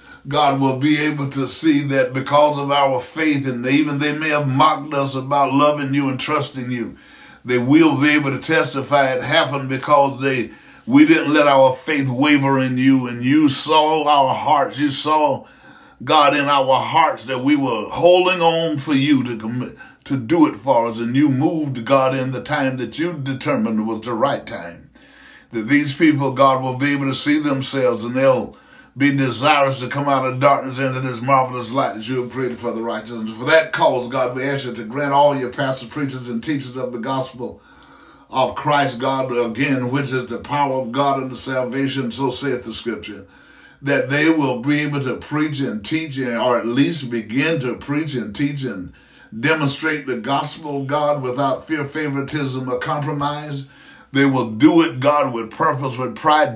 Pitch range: 130-150 Hz